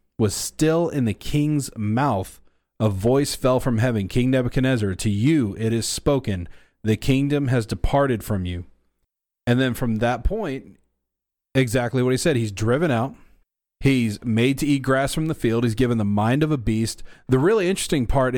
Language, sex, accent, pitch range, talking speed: English, male, American, 105-130 Hz, 180 wpm